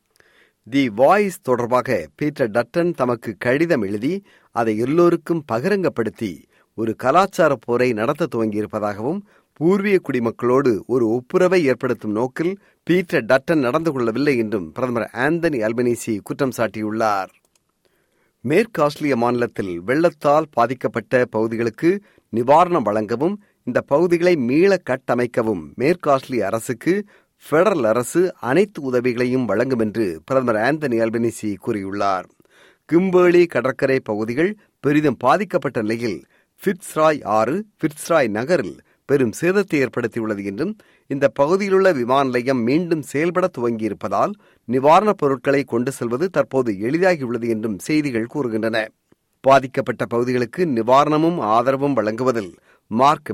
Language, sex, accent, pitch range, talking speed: Tamil, male, native, 115-170 Hz, 100 wpm